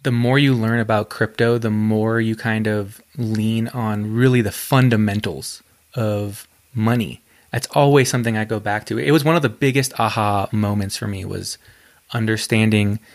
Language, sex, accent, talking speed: English, male, American, 170 wpm